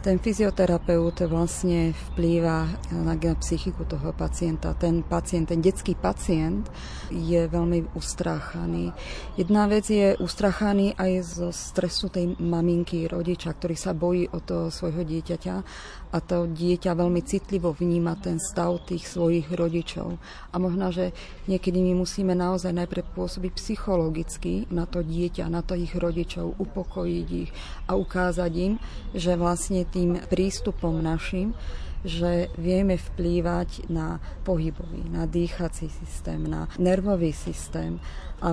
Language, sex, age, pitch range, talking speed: Slovak, female, 30-49, 170-185 Hz, 130 wpm